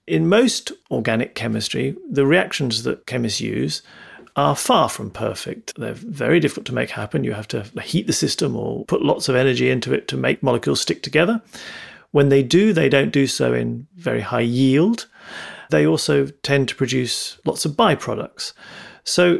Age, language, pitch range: 40-59, English, 130-175 Hz